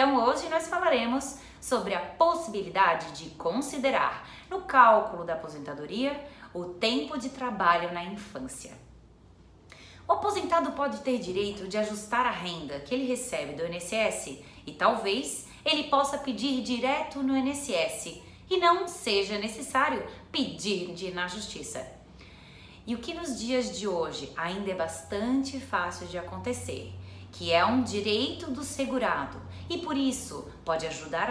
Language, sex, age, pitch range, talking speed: Portuguese, female, 20-39, 175-270 Hz, 140 wpm